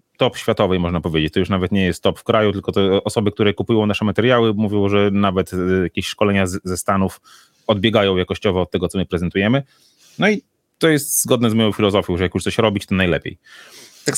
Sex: male